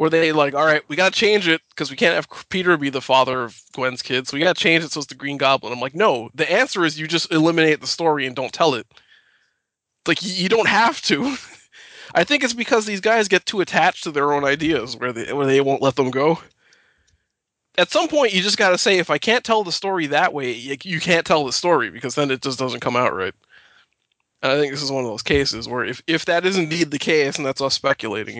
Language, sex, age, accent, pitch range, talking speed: English, male, 20-39, American, 130-175 Hz, 255 wpm